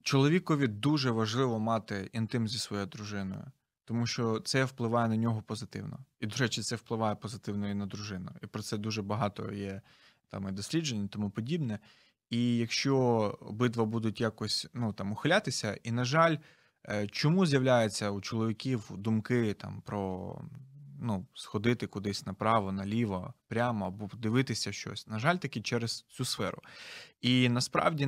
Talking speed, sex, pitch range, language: 145 wpm, male, 105-130 Hz, Ukrainian